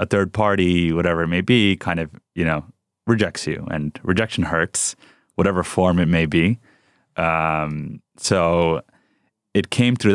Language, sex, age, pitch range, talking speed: English, male, 30-49, 80-95 Hz, 155 wpm